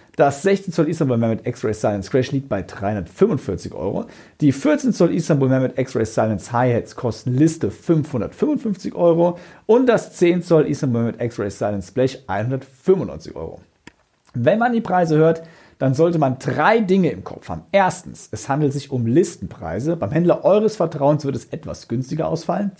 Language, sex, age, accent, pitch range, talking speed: German, male, 50-69, German, 115-165 Hz, 165 wpm